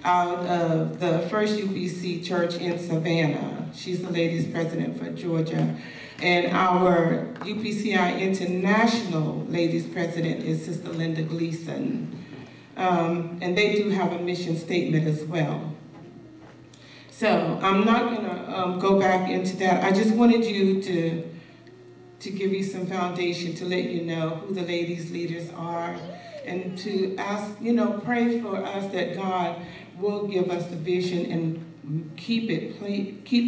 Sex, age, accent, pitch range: female, 40-59, American, 170-195 Hz